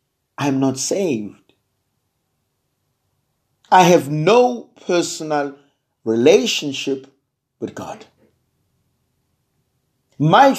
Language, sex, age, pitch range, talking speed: English, male, 60-79, 145-210 Hz, 70 wpm